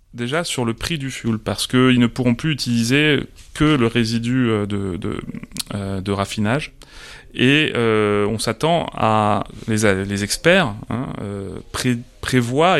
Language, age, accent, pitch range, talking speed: French, 30-49, French, 105-130 Hz, 140 wpm